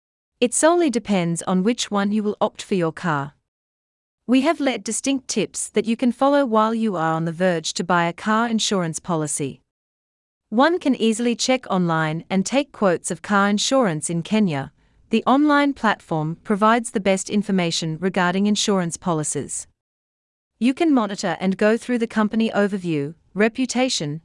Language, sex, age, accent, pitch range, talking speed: English, female, 40-59, Australian, 165-235 Hz, 165 wpm